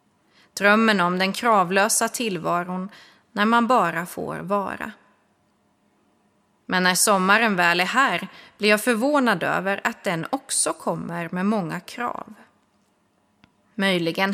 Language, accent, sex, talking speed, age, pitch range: Swedish, native, female, 115 wpm, 30-49, 185-230 Hz